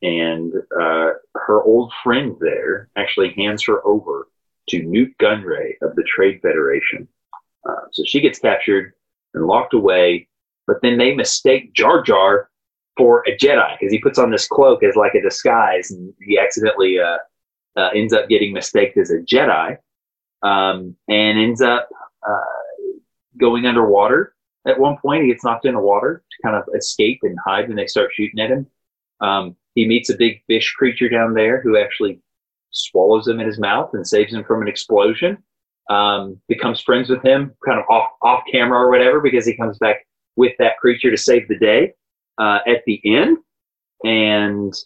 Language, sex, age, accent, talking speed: English, male, 30-49, American, 180 wpm